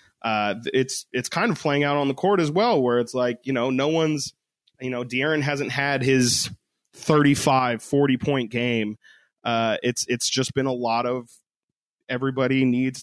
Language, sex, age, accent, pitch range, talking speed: English, male, 20-39, American, 120-140 Hz, 180 wpm